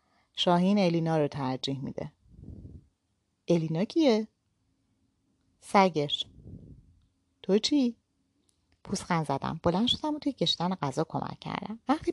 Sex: female